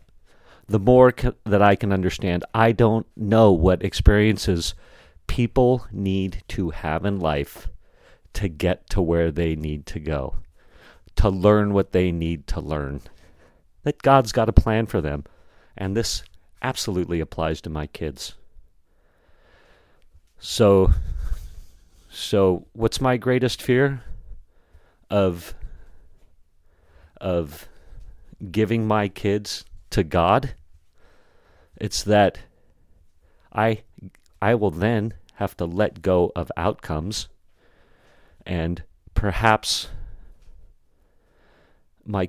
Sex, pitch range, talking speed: male, 80-100 Hz, 105 wpm